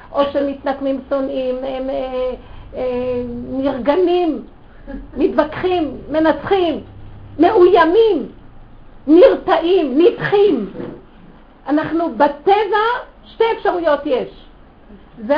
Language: Hebrew